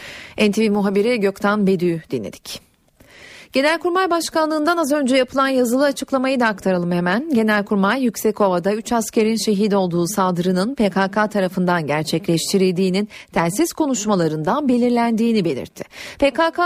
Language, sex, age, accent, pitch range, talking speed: Turkish, female, 40-59, native, 185-255 Hz, 110 wpm